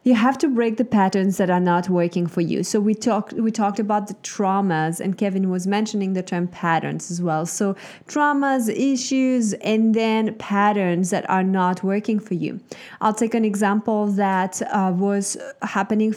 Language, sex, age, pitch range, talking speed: English, female, 20-39, 185-220 Hz, 180 wpm